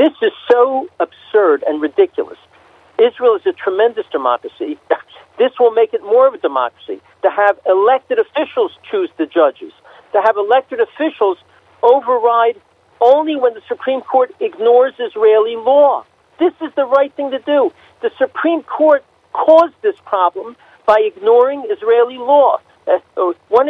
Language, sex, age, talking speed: Hebrew, male, 50-69, 145 wpm